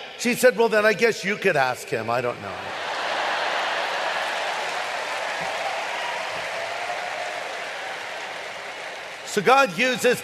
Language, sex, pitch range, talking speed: English, male, 180-215 Hz, 100 wpm